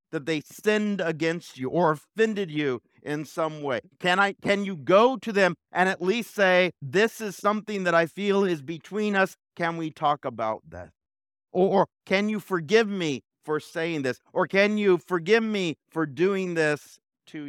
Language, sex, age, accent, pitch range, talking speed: English, male, 50-69, American, 150-200 Hz, 180 wpm